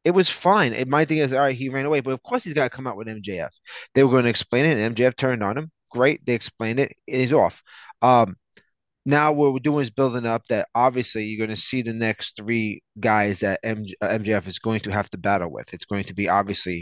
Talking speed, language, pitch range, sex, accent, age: 255 wpm, English, 105-135 Hz, male, American, 20-39